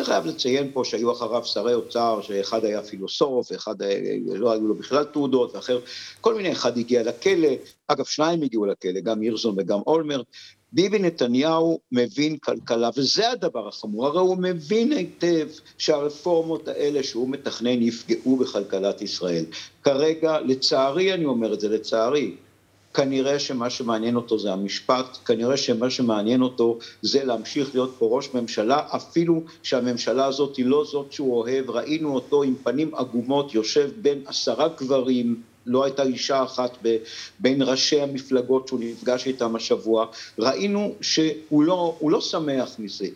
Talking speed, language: 150 wpm, Hebrew